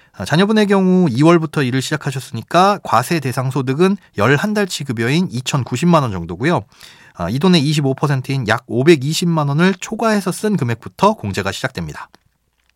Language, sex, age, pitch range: Korean, male, 30-49, 125-190 Hz